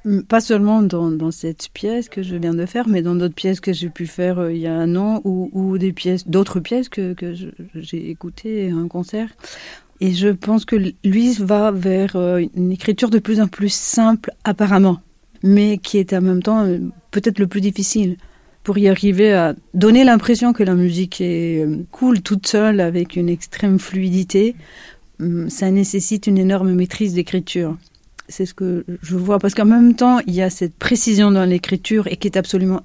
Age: 50-69